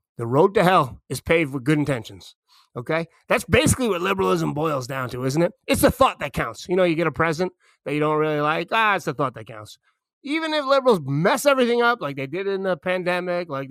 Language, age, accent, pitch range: English, 30-49, American, 145-190 Hz